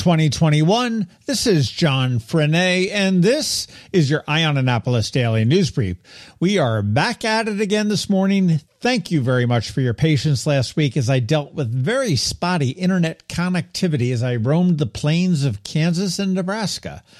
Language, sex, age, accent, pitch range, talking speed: English, male, 50-69, American, 120-180 Hz, 165 wpm